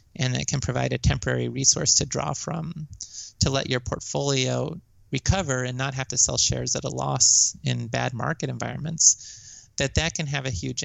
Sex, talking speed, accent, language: male, 190 wpm, American, English